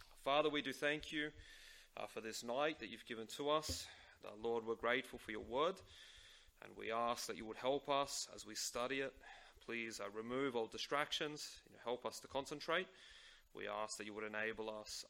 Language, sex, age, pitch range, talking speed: English, male, 30-49, 110-140 Hz, 200 wpm